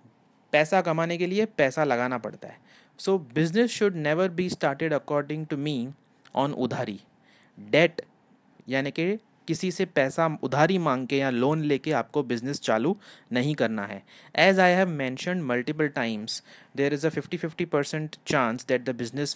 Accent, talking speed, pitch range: Indian, 145 wpm, 130-170 Hz